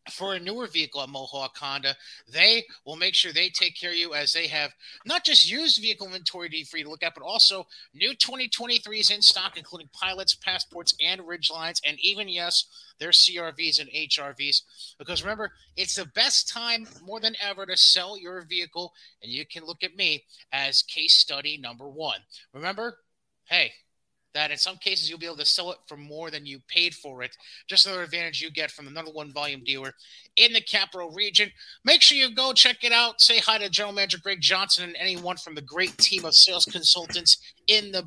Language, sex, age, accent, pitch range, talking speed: English, male, 30-49, American, 155-195 Hz, 205 wpm